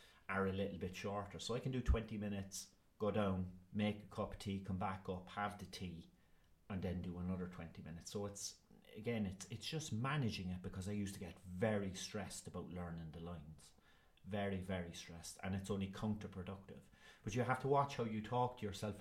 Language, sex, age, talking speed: English, male, 30-49, 210 wpm